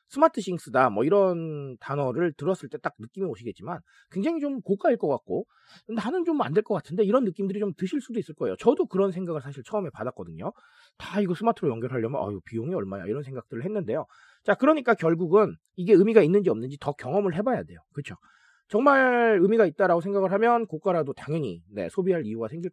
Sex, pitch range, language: male, 145-230 Hz, Korean